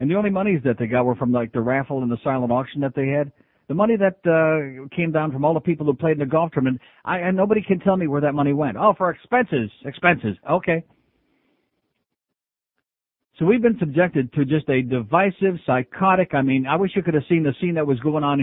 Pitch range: 135-195 Hz